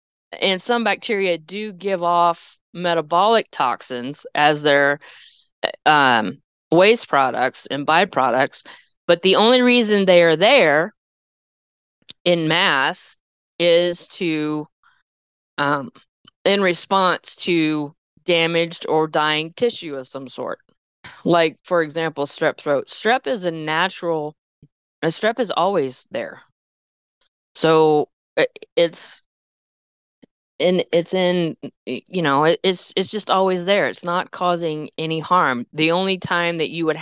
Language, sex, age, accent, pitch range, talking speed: English, female, 20-39, American, 155-185 Hz, 120 wpm